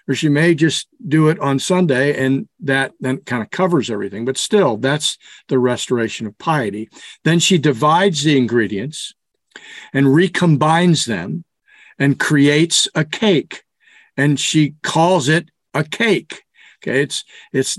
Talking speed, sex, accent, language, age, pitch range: 145 wpm, male, American, English, 50-69, 130-170 Hz